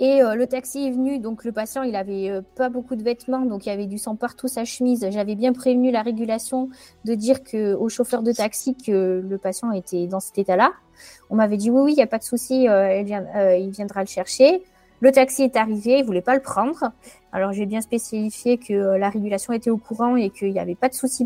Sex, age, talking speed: female, 20-39, 235 wpm